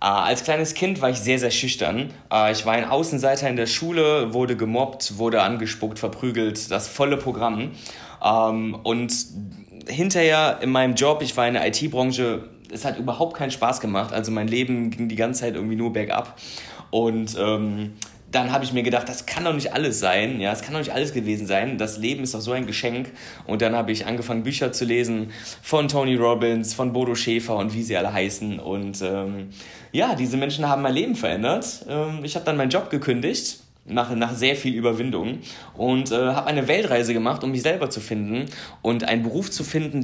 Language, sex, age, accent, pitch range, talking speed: German, male, 20-39, German, 115-135 Hz, 195 wpm